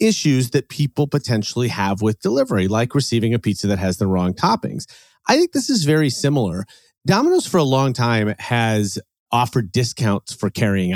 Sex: male